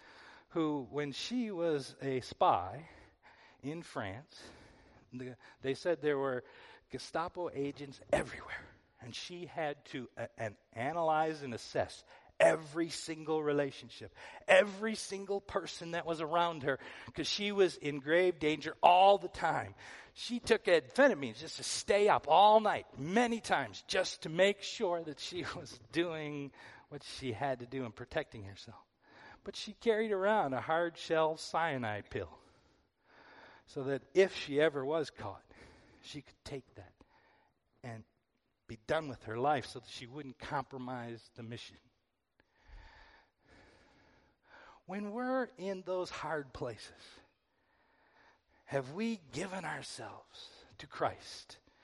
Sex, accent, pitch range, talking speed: male, American, 130-190 Hz, 135 wpm